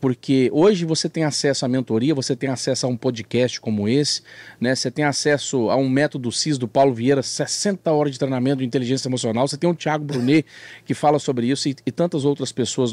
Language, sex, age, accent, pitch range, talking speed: Portuguese, male, 40-59, Brazilian, 135-200 Hz, 215 wpm